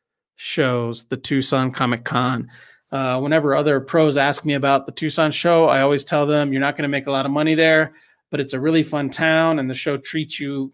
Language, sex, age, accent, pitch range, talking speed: English, male, 30-49, American, 130-150 Hz, 225 wpm